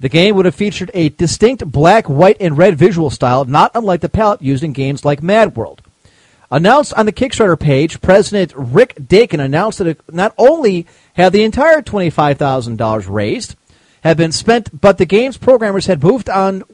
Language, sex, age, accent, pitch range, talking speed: English, male, 40-59, American, 150-210 Hz, 185 wpm